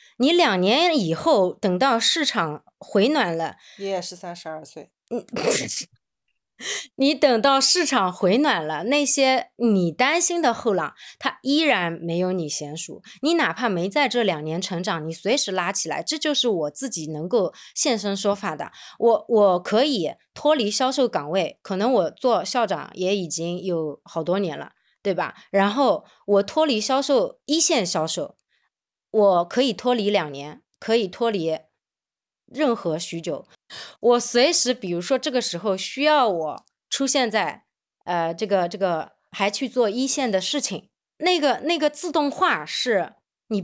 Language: Chinese